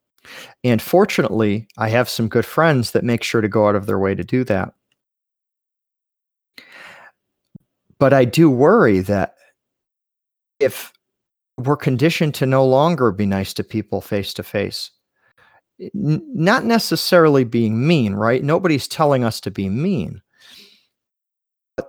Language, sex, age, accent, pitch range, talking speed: English, male, 40-59, American, 110-155 Hz, 135 wpm